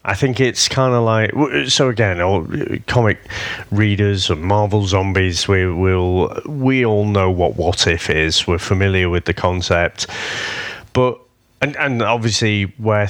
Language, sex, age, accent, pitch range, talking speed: English, male, 30-49, British, 95-120 Hz, 140 wpm